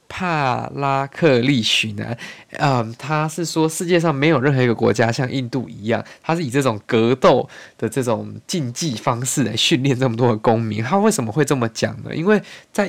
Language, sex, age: Chinese, male, 20-39